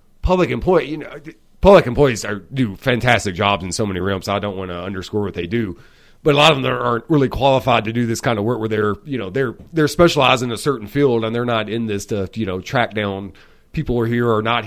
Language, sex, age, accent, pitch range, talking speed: English, male, 30-49, American, 105-130 Hz, 260 wpm